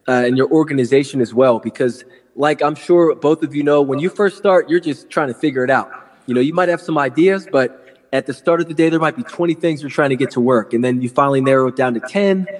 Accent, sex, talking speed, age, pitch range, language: American, male, 280 wpm, 20-39, 125-150 Hz, English